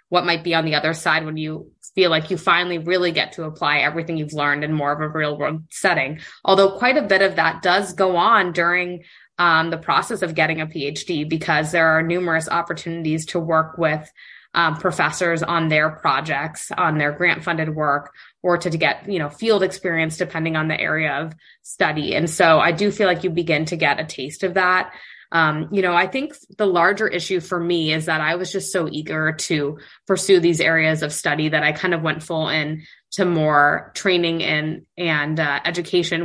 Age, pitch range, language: 20-39, 155-180 Hz, English